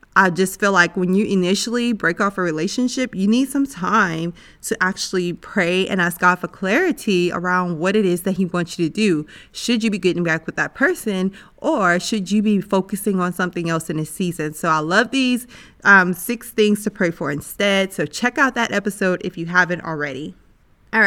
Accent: American